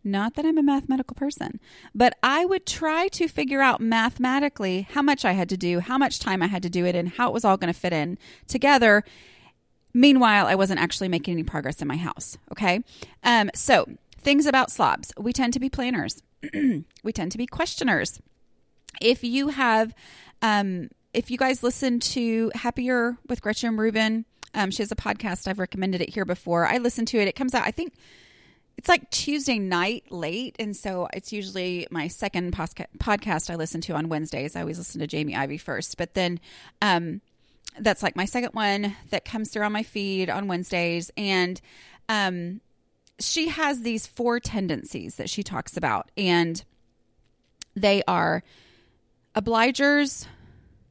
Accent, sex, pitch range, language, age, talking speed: American, female, 180-250 Hz, English, 30-49, 180 wpm